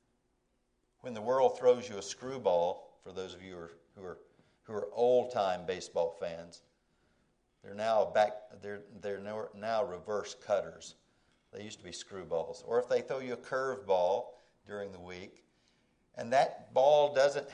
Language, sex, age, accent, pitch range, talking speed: English, male, 50-69, American, 105-155 Hz, 160 wpm